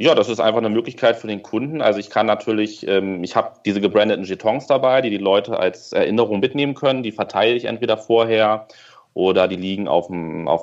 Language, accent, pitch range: German, German, 95-105 Hz